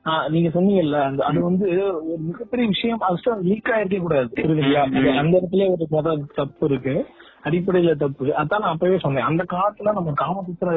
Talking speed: 95 wpm